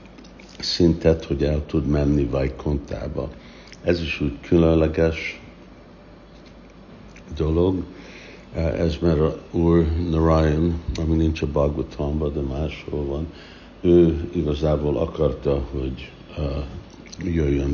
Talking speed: 95 wpm